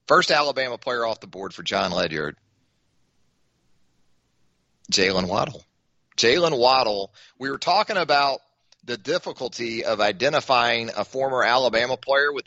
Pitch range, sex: 100-145 Hz, male